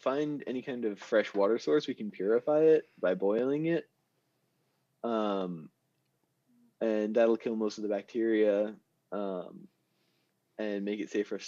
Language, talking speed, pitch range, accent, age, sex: English, 150 wpm, 100-125 Hz, American, 20-39, male